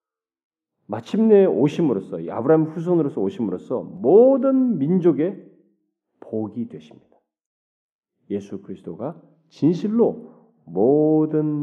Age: 40-59